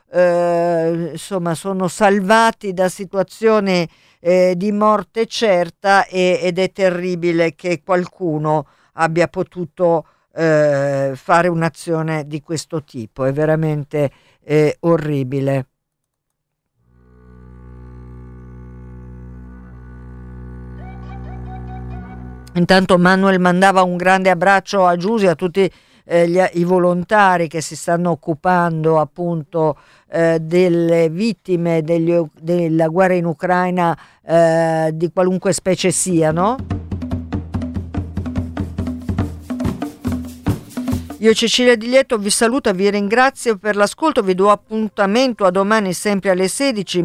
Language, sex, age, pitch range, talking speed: Italian, female, 50-69, 150-190 Hz, 95 wpm